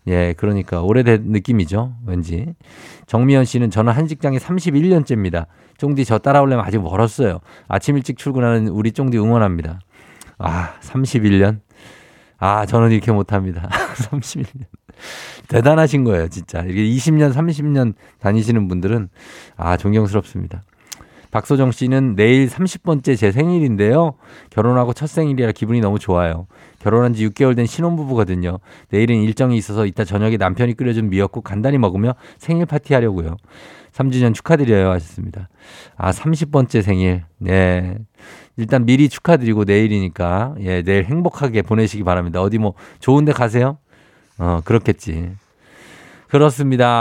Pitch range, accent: 100-135 Hz, native